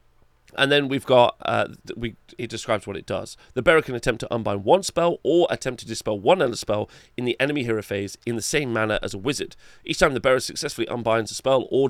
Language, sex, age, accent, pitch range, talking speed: English, male, 30-49, British, 105-125 Hz, 235 wpm